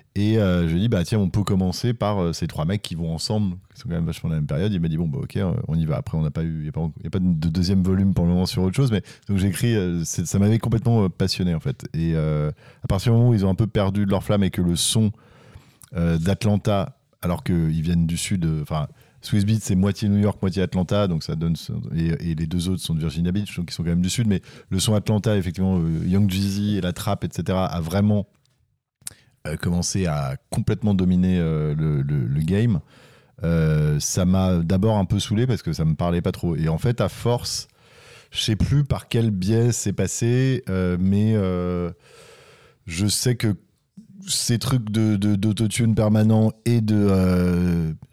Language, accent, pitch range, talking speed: French, French, 85-110 Hz, 225 wpm